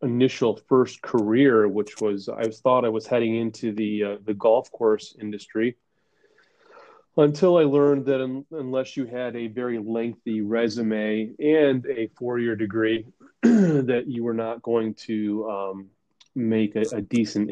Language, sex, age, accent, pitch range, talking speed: English, male, 30-49, American, 105-120 Hz, 155 wpm